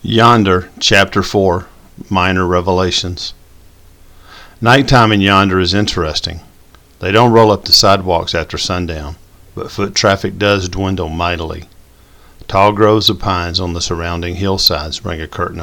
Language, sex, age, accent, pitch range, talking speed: English, male, 50-69, American, 85-100 Hz, 135 wpm